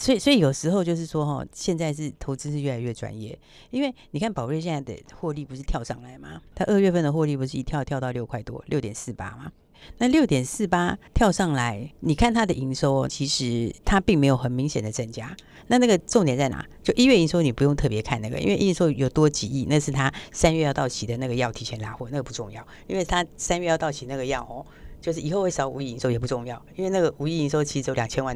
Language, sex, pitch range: Chinese, female, 125-170 Hz